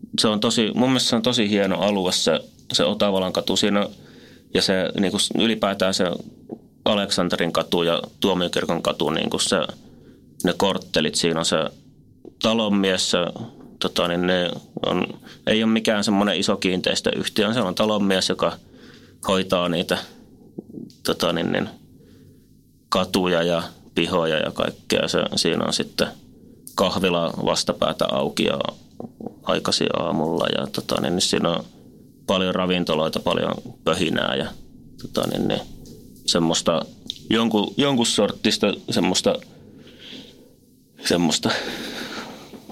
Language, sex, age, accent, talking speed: Finnish, male, 30-49, native, 125 wpm